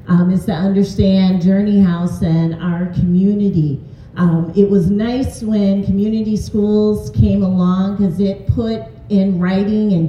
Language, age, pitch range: English, 40-59, 175-210 Hz